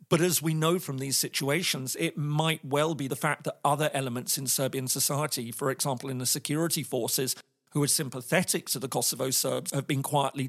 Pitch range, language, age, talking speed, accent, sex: 130-150 Hz, English, 40-59, 200 wpm, British, male